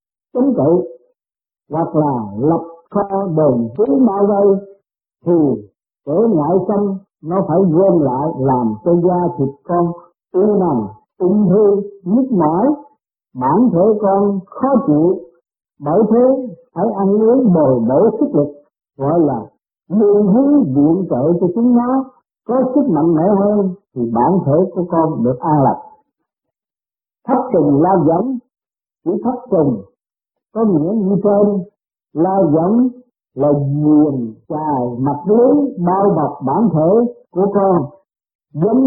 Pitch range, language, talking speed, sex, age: 155-235 Hz, Vietnamese, 140 wpm, male, 50-69